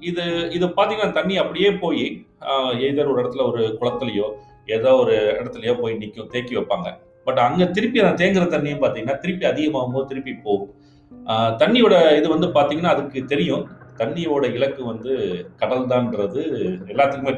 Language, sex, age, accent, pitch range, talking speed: Tamil, male, 30-49, native, 120-160 Hz, 145 wpm